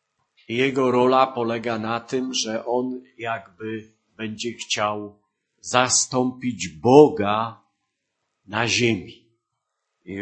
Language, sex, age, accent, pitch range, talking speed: Polish, male, 50-69, native, 110-135 Hz, 90 wpm